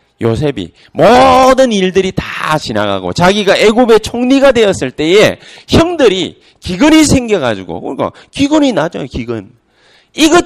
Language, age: Korean, 40-59